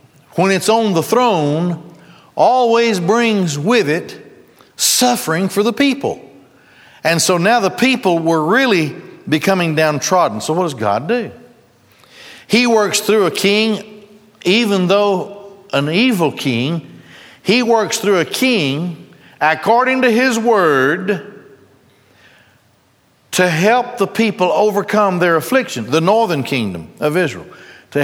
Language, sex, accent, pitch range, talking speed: English, male, American, 145-210 Hz, 125 wpm